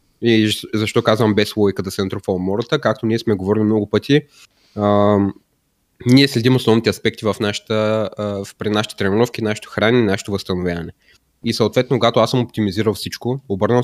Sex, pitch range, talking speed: male, 105-120 Hz, 165 wpm